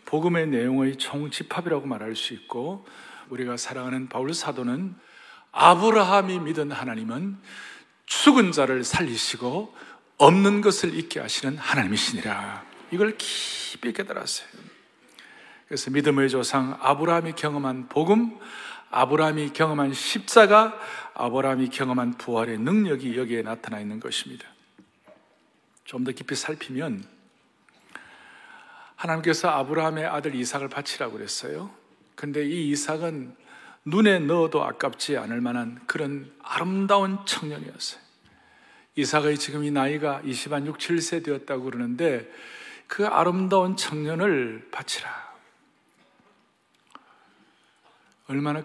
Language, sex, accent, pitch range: Korean, male, native, 130-175 Hz